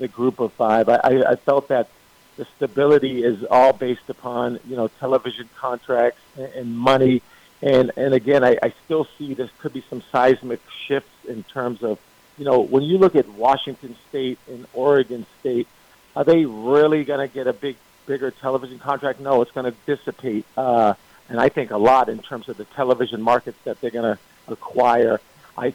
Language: English